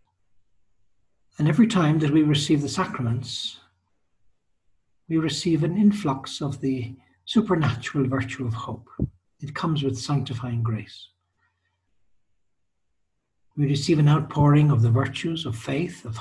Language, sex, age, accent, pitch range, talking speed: English, male, 60-79, Irish, 100-150 Hz, 120 wpm